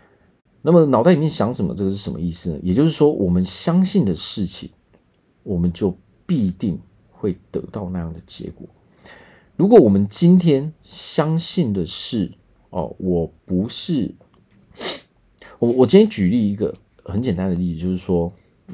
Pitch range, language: 90-145 Hz, Chinese